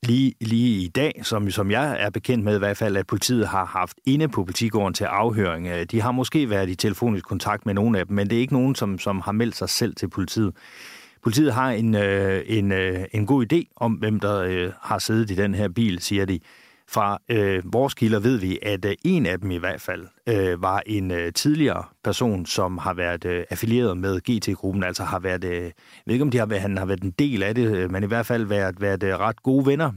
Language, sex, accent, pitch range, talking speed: Danish, male, native, 95-120 Hz, 240 wpm